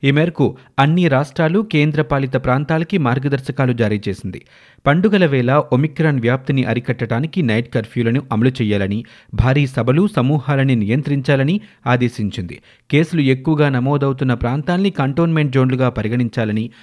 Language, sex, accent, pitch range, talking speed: Telugu, male, native, 120-145 Hz, 105 wpm